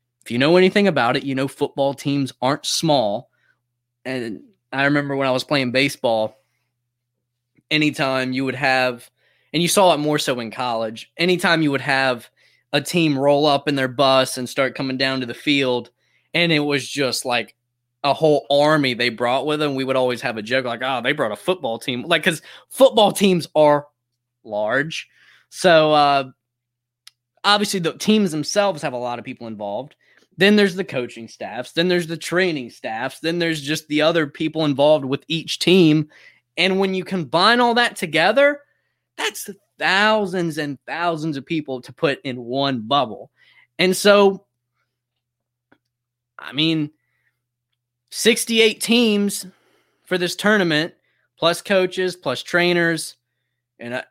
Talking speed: 160 wpm